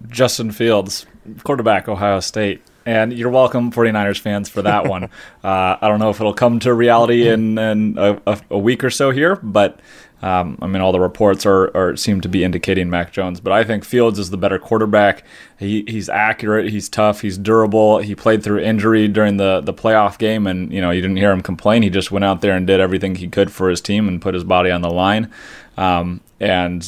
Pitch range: 95-110 Hz